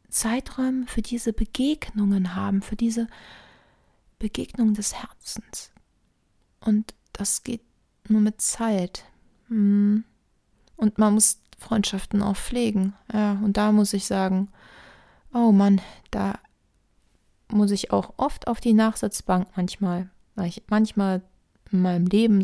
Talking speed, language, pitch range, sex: 120 wpm, German, 185-220 Hz, female